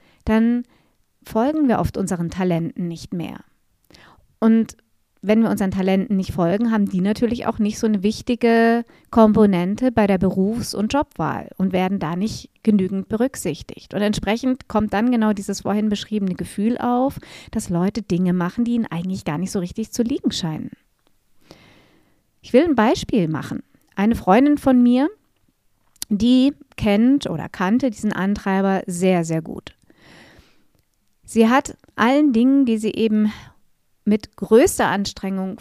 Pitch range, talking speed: 195-240 Hz, 145 wpm